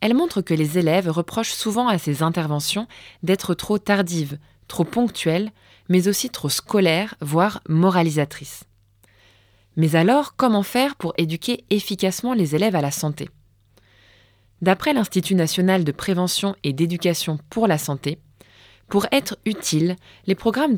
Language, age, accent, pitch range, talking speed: French, 20-39, French, 150-205 Hz, 140 wpm